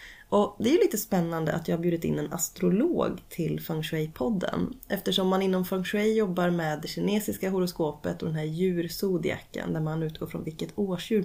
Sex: female